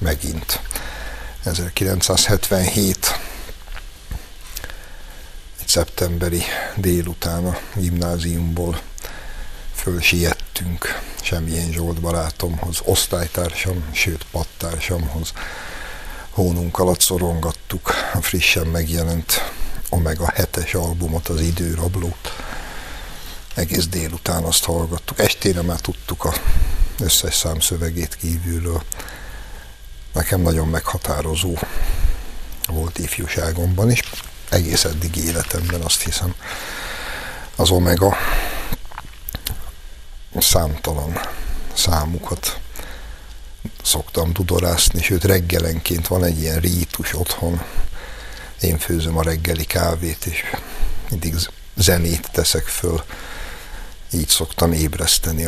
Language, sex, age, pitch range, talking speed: Hungarian, male, 60-79, 80-90 Hz, 80 wpm